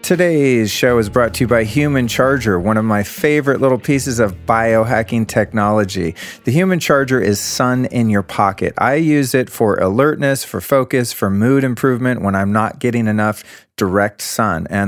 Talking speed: 180 wpm